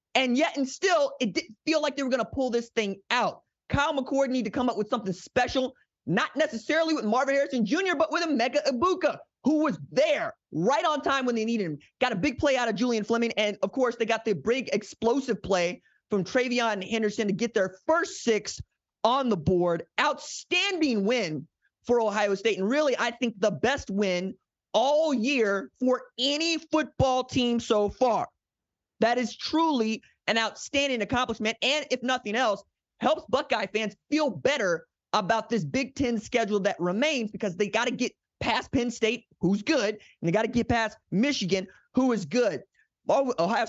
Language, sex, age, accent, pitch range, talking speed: English, male, 20-39, American, 200-260 Hz, 185 wpm